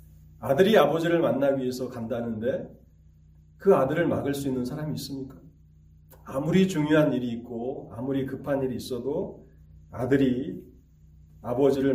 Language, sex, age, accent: Korean, male, 40-59, native